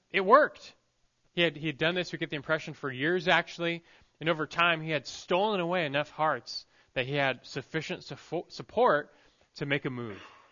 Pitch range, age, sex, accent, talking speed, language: 125-165 Hz, 20-39, male, American, 195 wpm, English